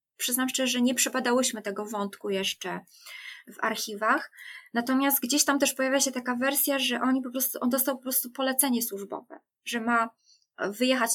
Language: Polish